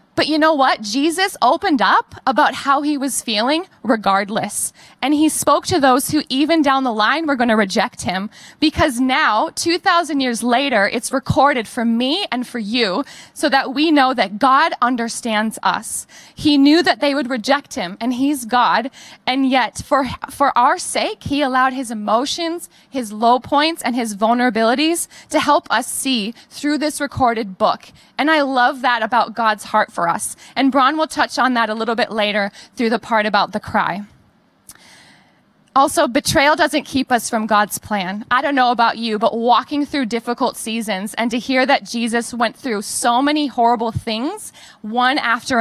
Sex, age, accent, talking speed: female, 20-39, American, 180 wpm